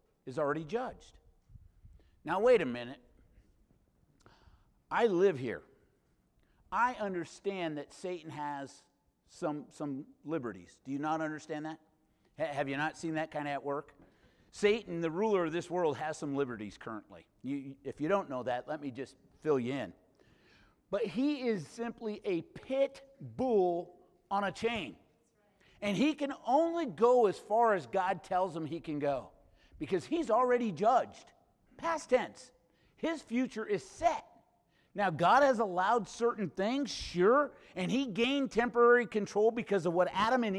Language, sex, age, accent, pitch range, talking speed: English, male, 50-69, American, 160-260 Hz, 155 wpm